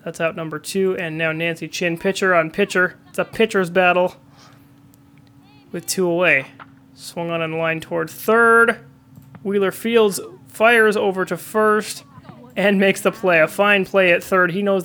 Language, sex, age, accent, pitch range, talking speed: English, male, 30-49, American, 145-195 Hz, 165 wpm